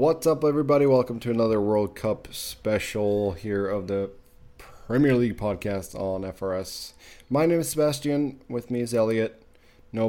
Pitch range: 100-120 Hz